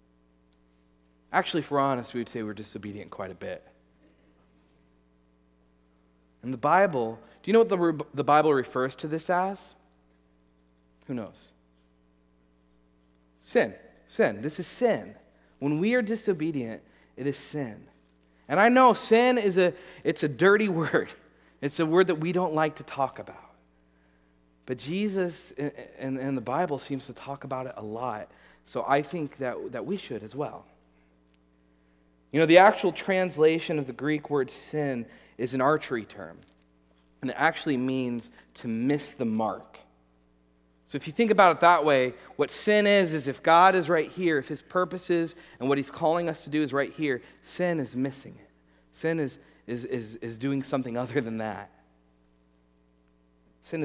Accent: American